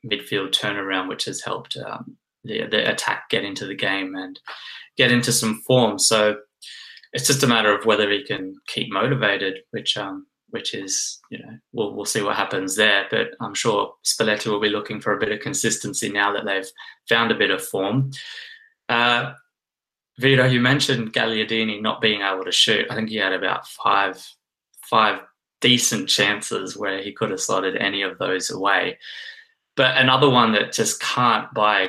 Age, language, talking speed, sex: 20-39, English, 185 wpm, male